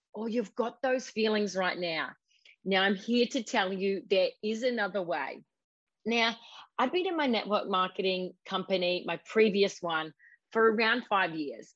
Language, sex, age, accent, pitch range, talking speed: English, female, 30-49, Australian, 185-240 Hz, 165 wpm